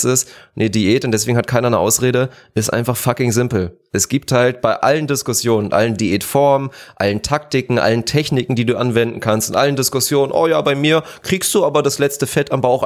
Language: German